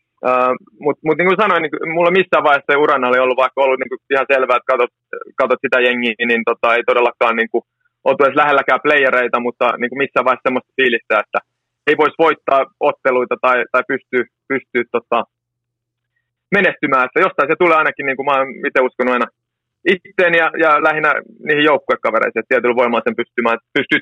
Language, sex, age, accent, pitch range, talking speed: Finnish, male, 30-49, native, 120-140 Hz, 175 wpm